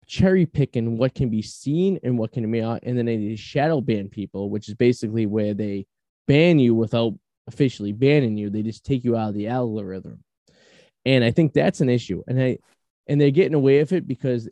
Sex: male